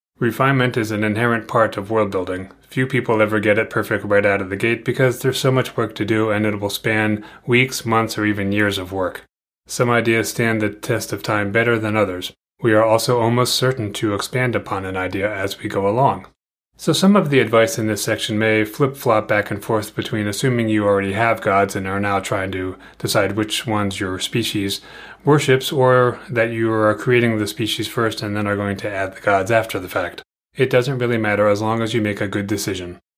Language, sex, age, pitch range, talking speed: English, male, 30-49, 100-115 Hz, 220 wpm